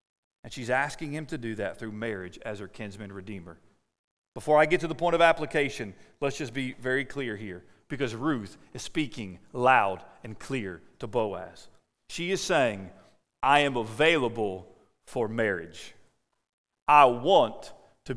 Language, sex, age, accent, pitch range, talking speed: English, male, 40-59, American, 150-210 Hz, 155 wpm